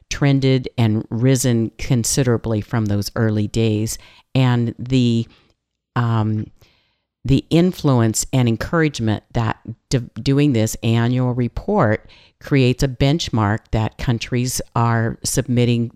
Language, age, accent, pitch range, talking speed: English, 50-69, American, 110-130 Hz, 105 wpm